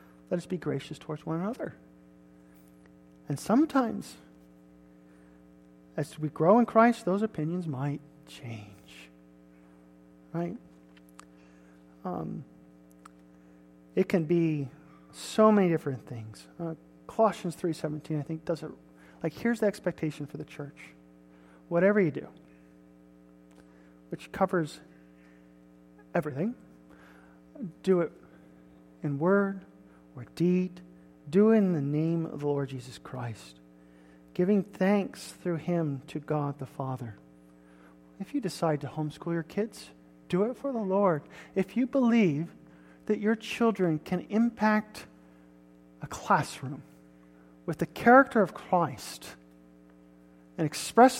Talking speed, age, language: 115 wpm, 40-59, English